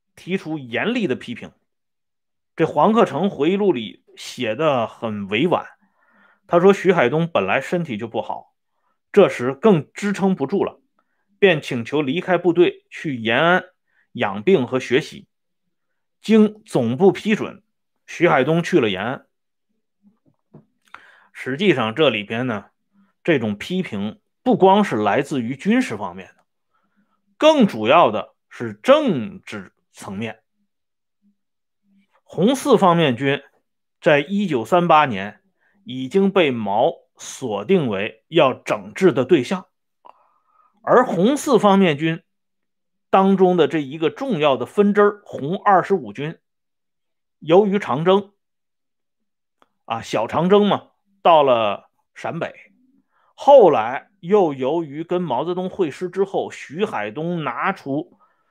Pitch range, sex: 160-210 Hz, male